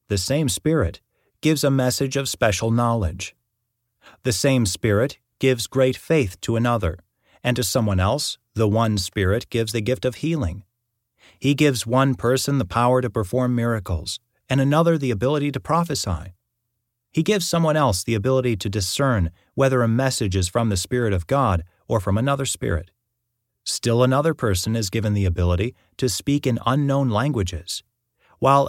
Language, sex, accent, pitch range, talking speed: English, male, American, 105-135 Hz, 165 wpm